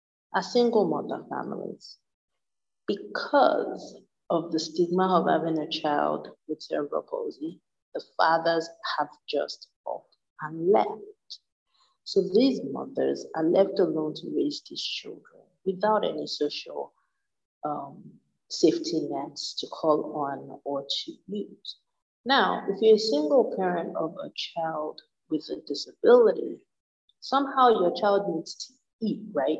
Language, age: English, 50-69